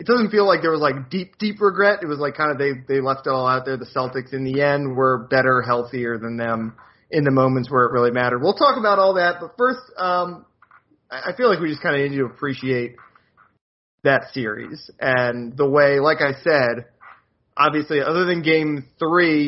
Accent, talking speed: American, 215 wpm